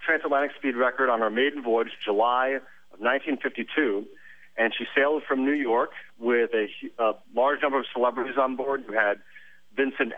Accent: American